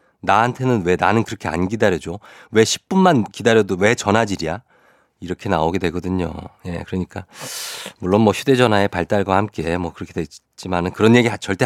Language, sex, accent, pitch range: Korean, male, native, 95-125 Hz